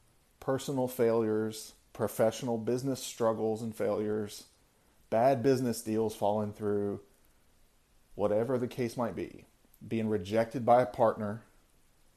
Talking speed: 110 wpm